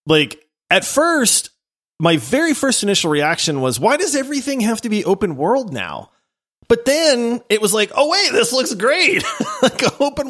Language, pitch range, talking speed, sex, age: English, 130-210 Hz, 175 wpm, male, 30-49